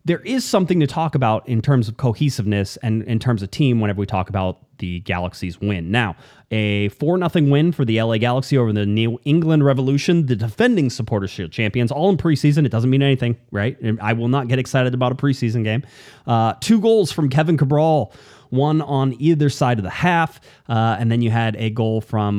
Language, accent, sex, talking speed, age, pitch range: English, American, male, 210 wpm, 30-49, 110-140 Hz